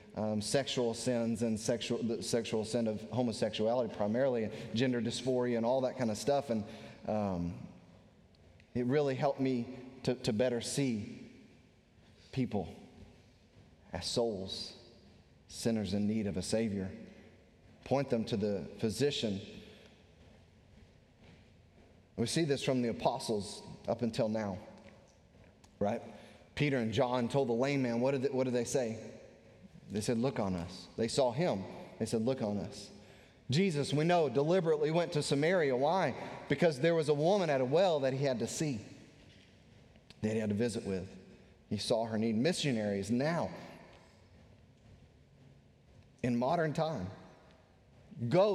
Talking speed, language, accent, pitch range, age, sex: 140 wpm, English, American, 110-140 Hz, 30-49, male